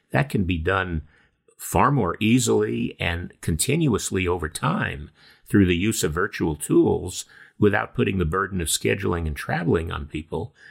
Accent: American